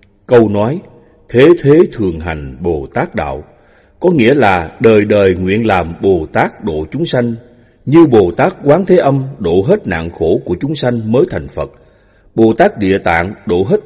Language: Vietnamese